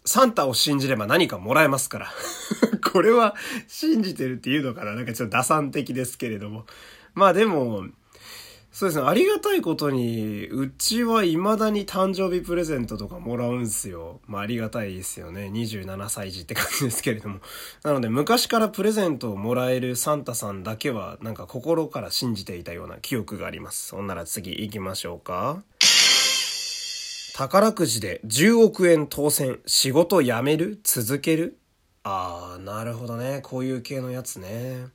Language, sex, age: Japanese, male, 20-39